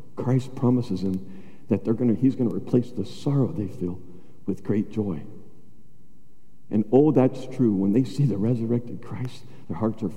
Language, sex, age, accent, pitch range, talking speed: English, male, 60-79, American, 115-170 Hz, 175 wpm